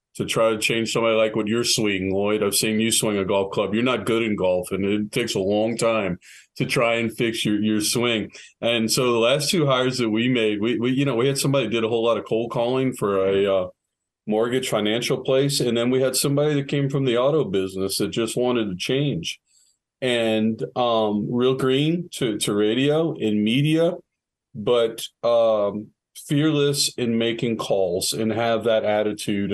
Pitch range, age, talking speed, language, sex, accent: 105-130 Hz, 40-59, 200 wpm, English, male, American